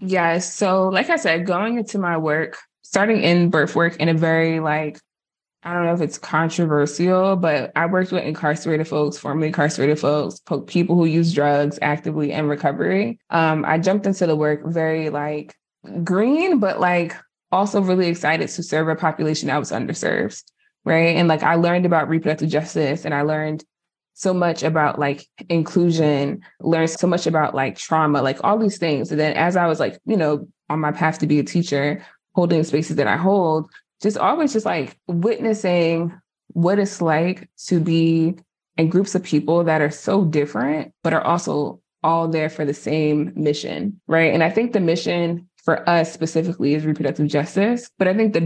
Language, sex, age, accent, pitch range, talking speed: English, female, 20-39, American, 155-180 Hz, 185 wpm